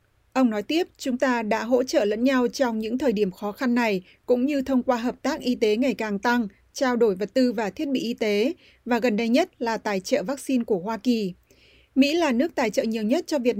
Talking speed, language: 250 wpm, Vietnamese